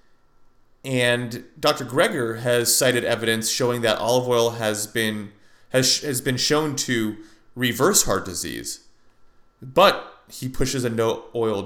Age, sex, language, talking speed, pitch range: 30-49, male, English, 135 wpm, 105-145 Hz